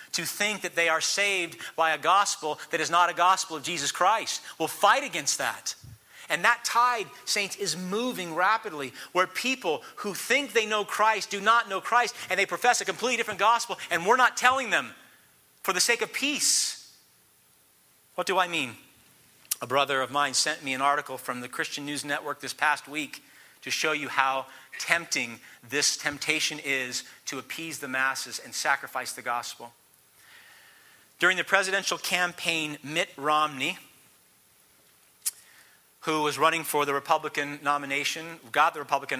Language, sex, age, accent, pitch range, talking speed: English, male, 40-59, American, 145-200 Hz, 165 wpm